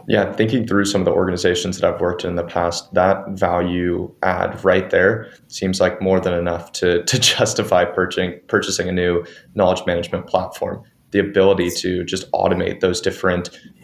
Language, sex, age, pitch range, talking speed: English, male, 20-39, 95-105 Hz, 175 wpm